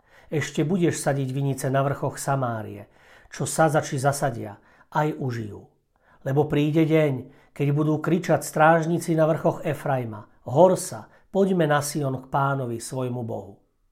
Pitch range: 130-165 Hz